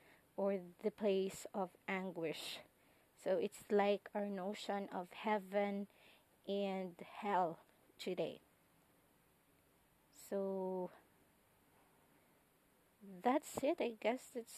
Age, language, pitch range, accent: 20-39, English, 190-220 Hz, Filipino